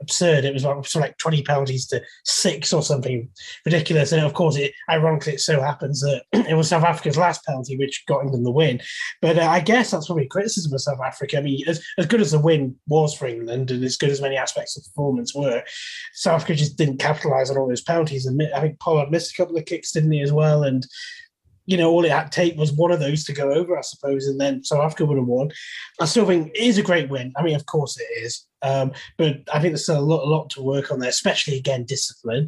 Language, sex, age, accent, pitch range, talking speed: English, male, 20-39, British, 135-165 Hz, 255 wpm